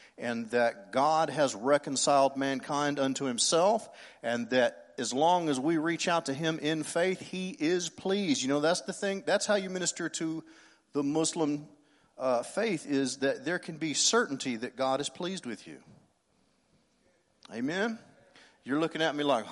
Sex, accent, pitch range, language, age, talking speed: male, American, 135-190 Hz, English, 40-59, 170 wpm